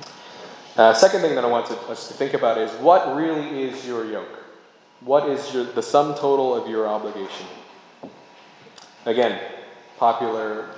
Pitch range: 85-125 Hz